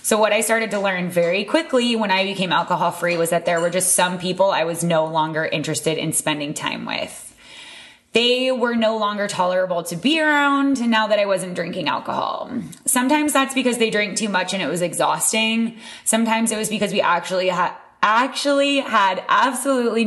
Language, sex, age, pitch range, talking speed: English, female, 20-39, 185-230 Hz, 185 wpm